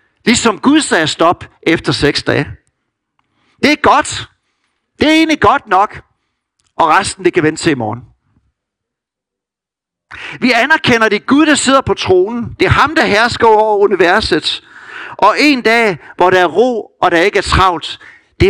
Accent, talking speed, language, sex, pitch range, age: native, 165 wpm, Danish, male, 160-255 Hz, 60-79